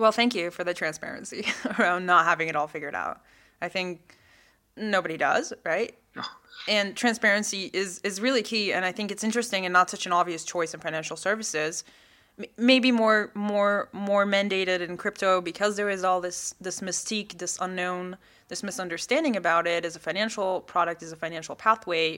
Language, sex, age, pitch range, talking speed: English, female, 20-39, 165-205 Hz, 180 wpm